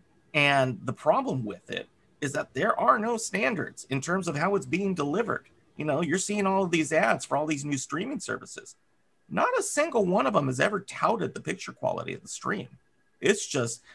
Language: English